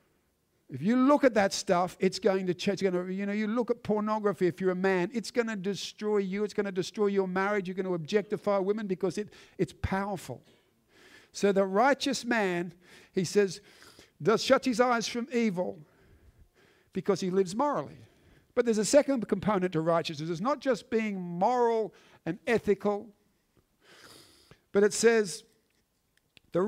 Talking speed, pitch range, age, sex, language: 170 wpm, 175-225 Hz, 50-69, male, English